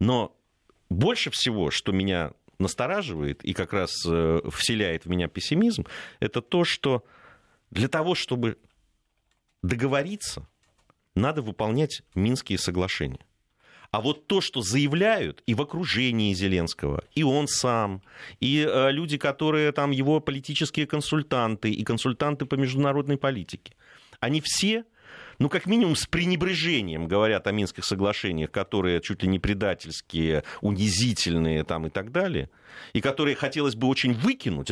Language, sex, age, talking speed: Russian, male, 30-49, 130 wpm